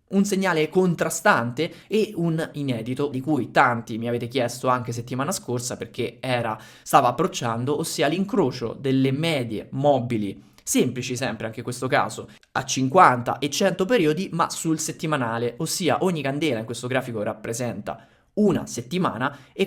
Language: Italian